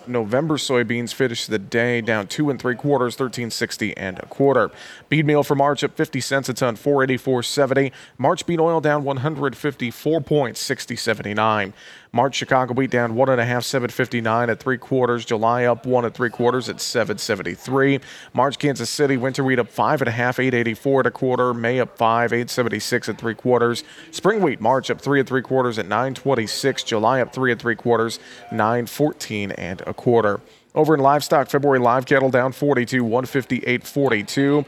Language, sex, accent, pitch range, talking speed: English, male, American, 120-140 Hz, 175 wpm